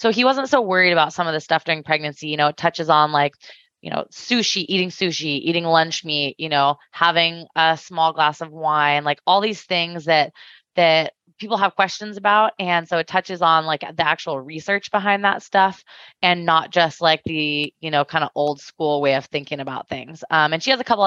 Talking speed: 220 wpm